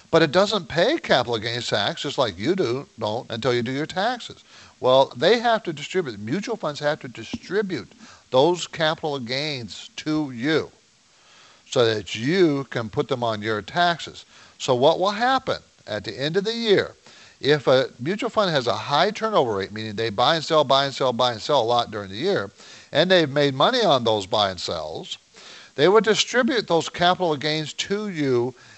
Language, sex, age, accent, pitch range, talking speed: English, male, 50-69, American, 120-170 Hz, 195 wpm